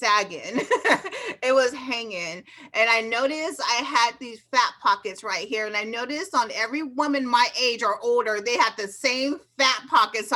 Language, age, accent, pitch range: English, 30-49, American, 220-280 Hz